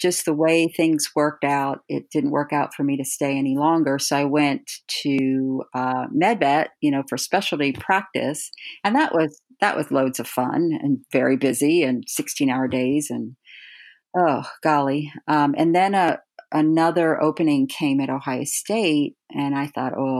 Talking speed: 170 wpm